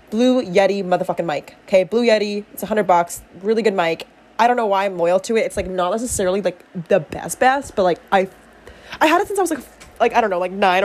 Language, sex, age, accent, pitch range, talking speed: English, female, 20-39, American, 190-250 Hz, 255 wpm